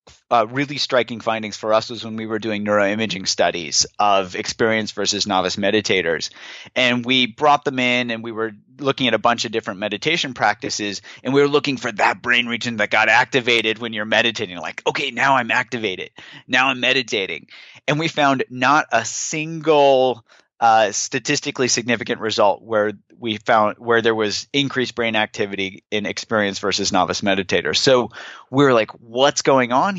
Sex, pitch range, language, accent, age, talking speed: male, 110-135 Hz, English, American, 30-49, 175 wpm